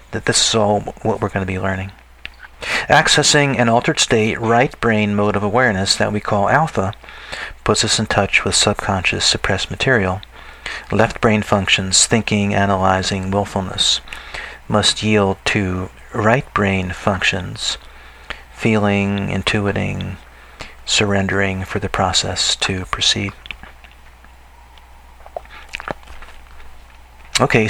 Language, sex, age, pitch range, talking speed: English, male, 50-69, 95-115 Hz, 115 wpm